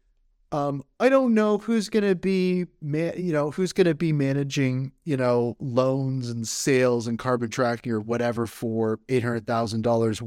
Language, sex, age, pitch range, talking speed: English, male, 30-49, 115-145 Hz, 165 wpm